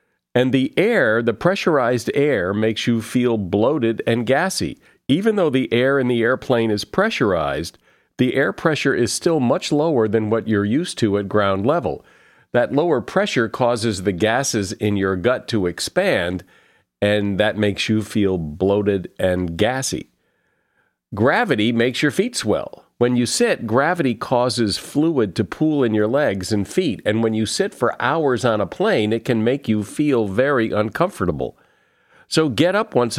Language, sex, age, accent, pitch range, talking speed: English, male, 50-69, American, 105-125 Hz, 170 wpm